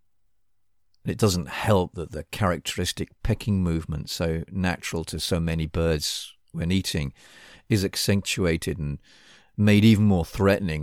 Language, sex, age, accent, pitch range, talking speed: English, male, 50-69, British, 80-100 Hz, 125 wpm